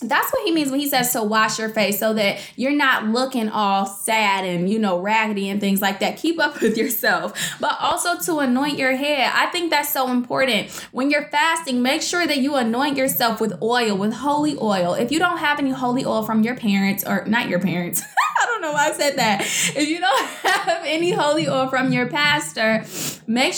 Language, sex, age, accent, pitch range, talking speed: English, female, 10-29, American, 205-275 Hz, 220 wpm